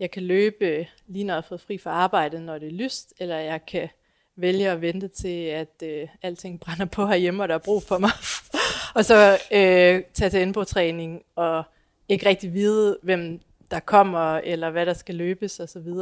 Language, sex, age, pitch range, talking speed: Danish, female, 30-49, 170-195 Hz, 200 wpm